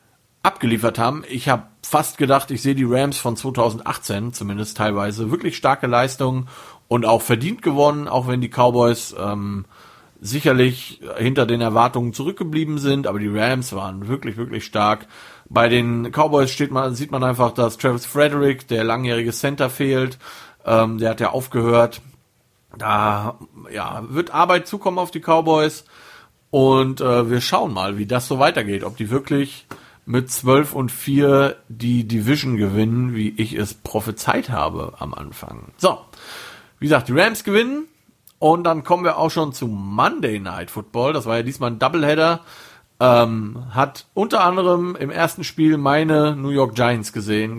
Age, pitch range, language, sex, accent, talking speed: 40-59, 115-145 Hz, German, male, German, 155 wpm